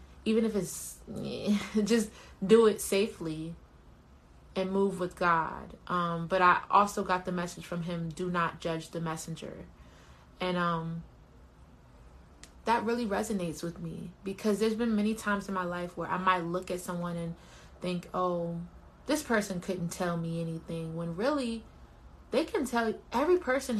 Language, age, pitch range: English, 20-39, 170-210 Hz